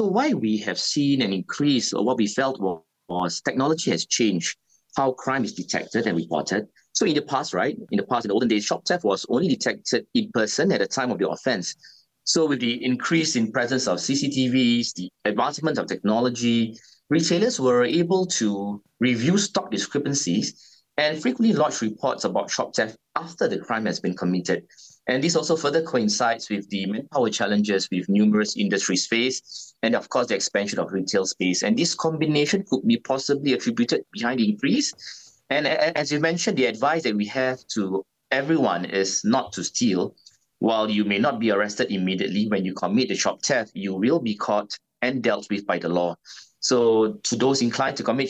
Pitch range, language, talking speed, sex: 105-150 Hz, English, 195 wpm, male